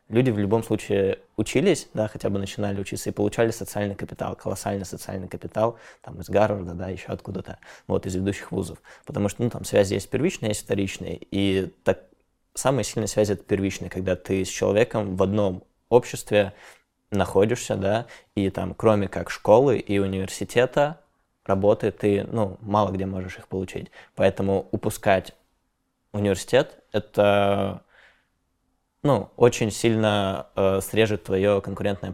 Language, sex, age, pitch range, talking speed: Russian, male, 20-39, 95-110 Hz, 145 wpm